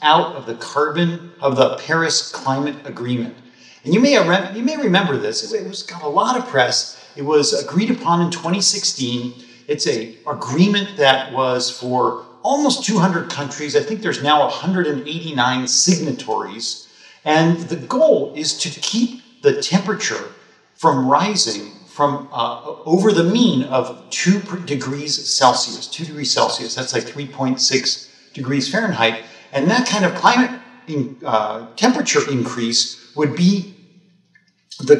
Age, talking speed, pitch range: 50-69, 140 wpm, 130-190 Hz